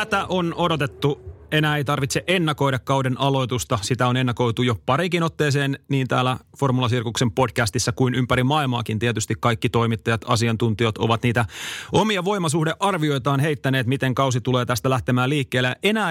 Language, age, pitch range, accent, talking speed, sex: Finnish, 30-49, 120-145 Hz, native, 140 wpm, male